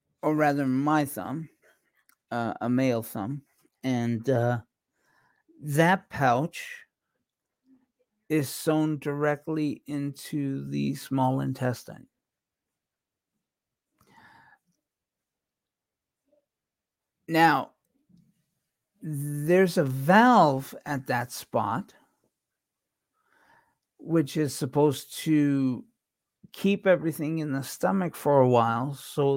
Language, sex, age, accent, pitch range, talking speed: English, male, 50-69, American, 125-160 Hz, 80 wpm